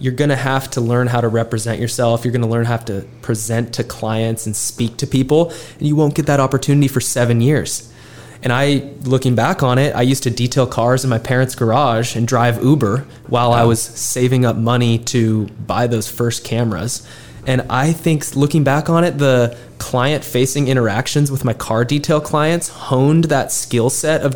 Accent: American